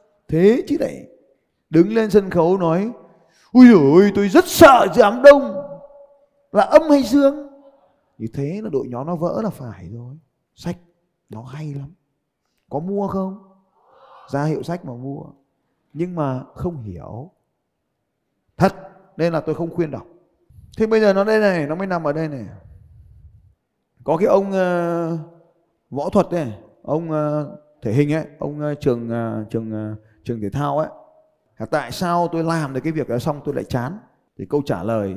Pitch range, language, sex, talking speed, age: 125-185 Hz, Vietnamese, male, 175 wpm, 20-39